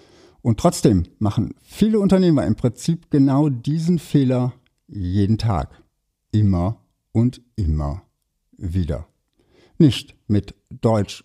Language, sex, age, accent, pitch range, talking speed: German, male, 60-79, German, 100-155 Hz, 100 wpm